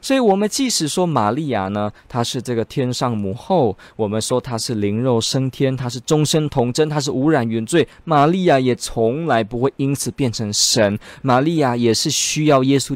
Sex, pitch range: male, 110-165 Hz